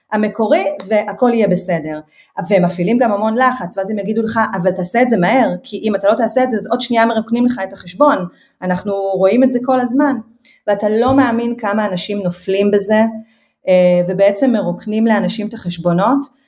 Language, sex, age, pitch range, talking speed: Hebrew, female, 30-49, 195-255 Hz, 180 wpm